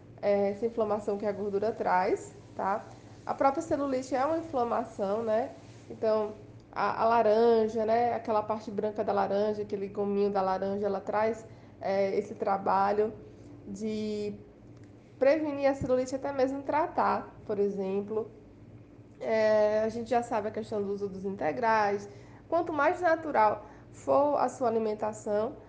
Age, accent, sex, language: 20-39, Brazilian, female, Portuguese